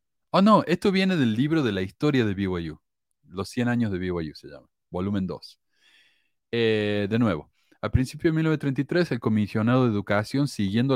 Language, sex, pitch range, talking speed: Spanish, male, 100-135 Hz, 170 wpm